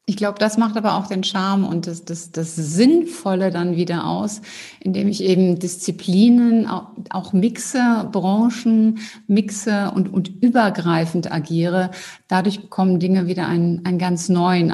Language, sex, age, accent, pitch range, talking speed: German, female, 50-69, German, 180-225 Hz, 140 wpm